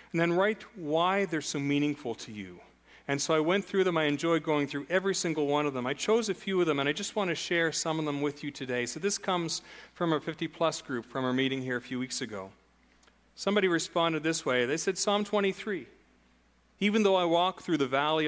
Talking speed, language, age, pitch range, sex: 235 wpm, English, 40-59, 135-175 Hz, male